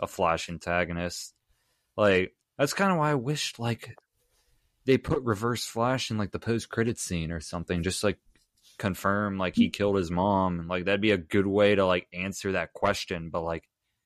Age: 20-39